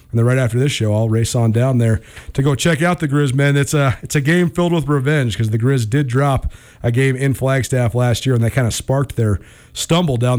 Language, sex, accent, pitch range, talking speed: English, male, American, 120-155 Hz, 260 wpm